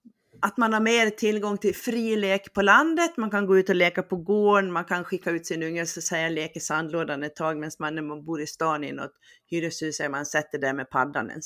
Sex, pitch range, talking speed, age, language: female, 155-220 Hz, 235 wpm, 40-59, Swedish